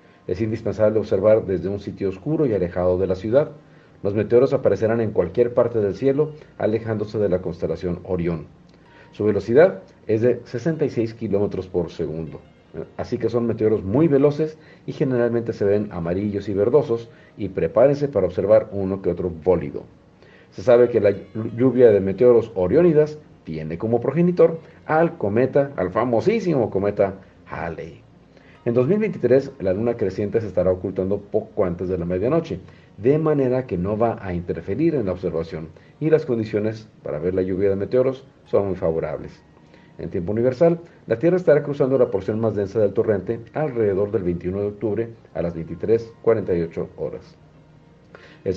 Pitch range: 95-135 Hz